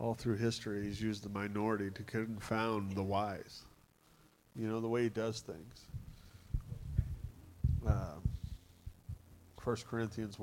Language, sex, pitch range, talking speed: English, male, 100-125 Hz, 120 wpm